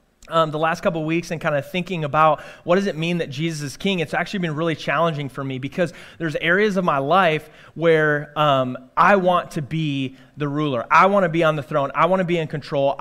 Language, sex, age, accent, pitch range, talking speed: English, male, 30-49, American, 140-170 Hz, 240 wpm